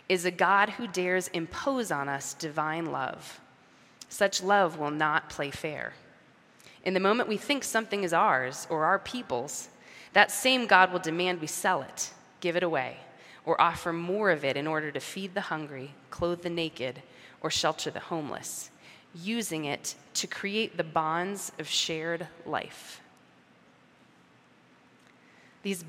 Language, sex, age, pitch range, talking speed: English, female, 20-39, 155-190 Hz, 155 wpm